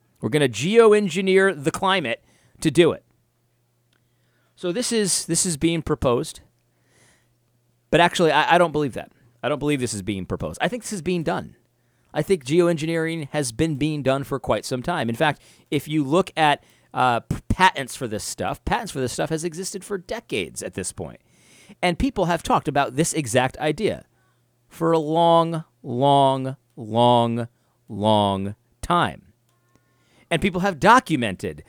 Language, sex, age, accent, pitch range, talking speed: English, male, 40-59, American, 120-180 Hz, 170 wpm